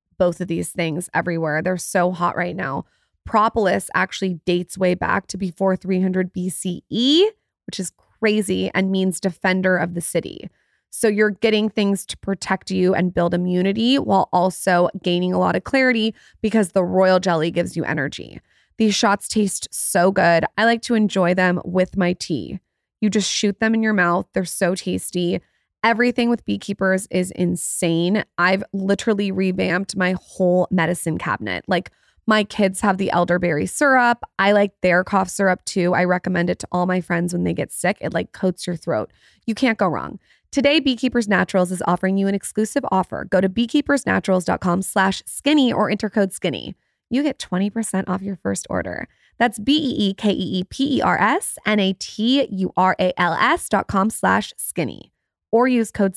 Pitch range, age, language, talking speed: 180-215 Hz, 20-39, English, 165 wpm